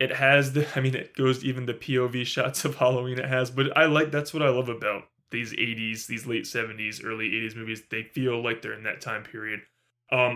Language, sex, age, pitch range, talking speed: English, male, 20-39, 115-135 Hz, 230 wpm